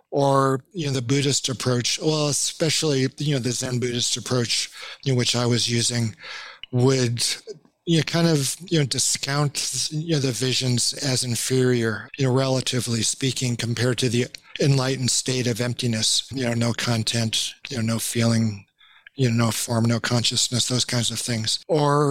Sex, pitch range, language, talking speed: male, 120-140 Hz, English, 165 wpm